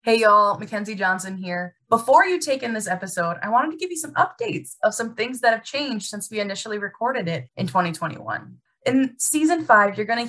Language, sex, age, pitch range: English, female, 20-39, 180-255 Hz